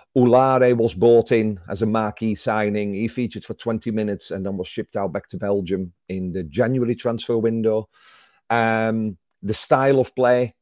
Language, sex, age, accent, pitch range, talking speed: English, male, 40-59, British, 100-120 Hz, 175 wpm